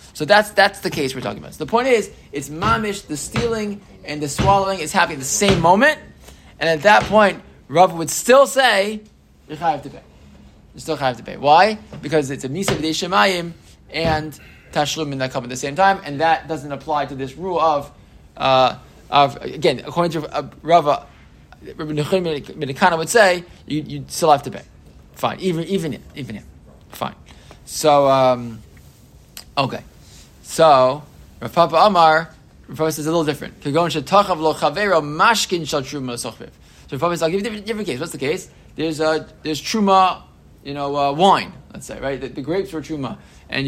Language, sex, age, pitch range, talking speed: English, male, 20-39, 140-180 Hz, 185 wpm